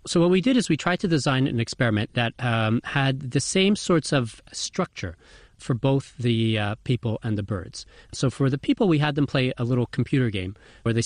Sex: male